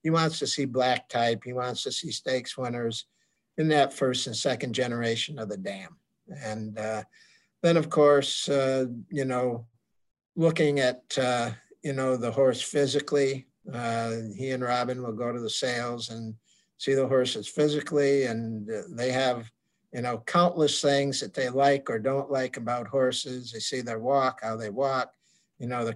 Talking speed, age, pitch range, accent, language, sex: 180 wpm, 60-79, 115-135 Hz, American, English, male